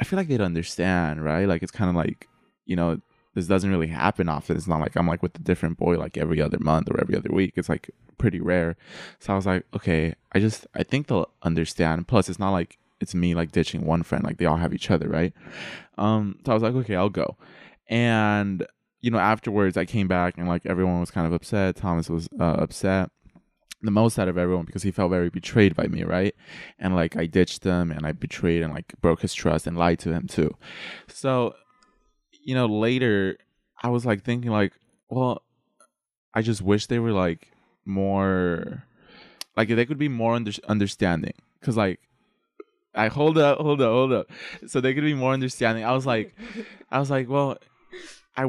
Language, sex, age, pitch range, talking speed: English, male, 20-39, 90-115 Hz, 210 wpm